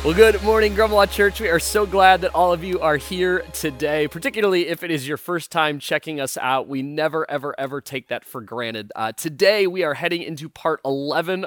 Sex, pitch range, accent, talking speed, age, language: male, 130-175 Hz, American, 220 wpm, 30-49, English